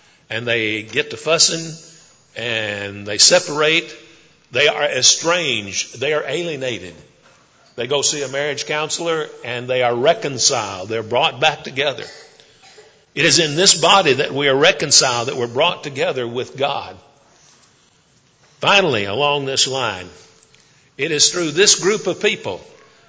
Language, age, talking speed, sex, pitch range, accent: English, 50-69, 140 wpm, male, 135-165 Hz, American